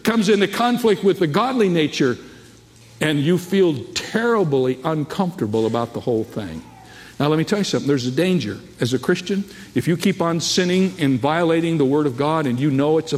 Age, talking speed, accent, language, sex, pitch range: 60-79, 200 wpm, American, English, male, 115-155 Hz